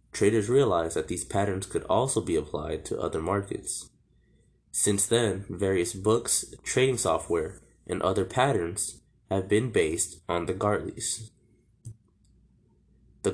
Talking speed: 125 wpm